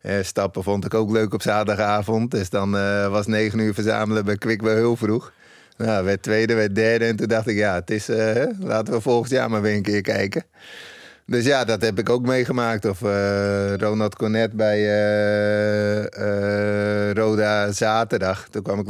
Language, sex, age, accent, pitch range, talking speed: Dutch, male, 30-49, Dutch, 100-115 Hz, 185 wpm